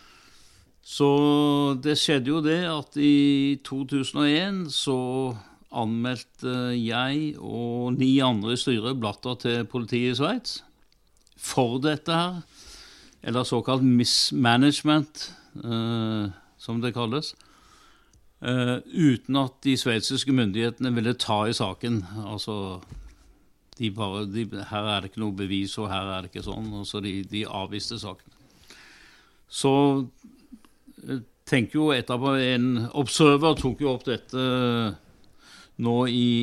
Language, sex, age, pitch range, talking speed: English, male, 60-79, 115-140 Hz, 120 wpm